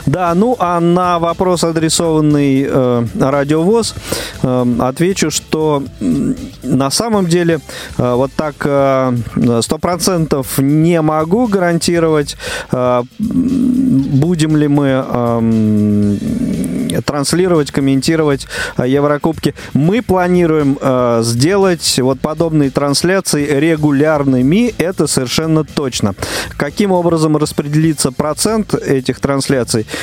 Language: Russian